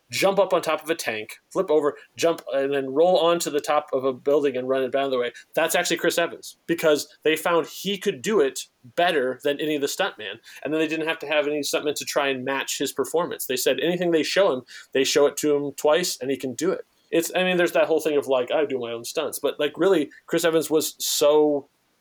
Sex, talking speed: male, 260 wpm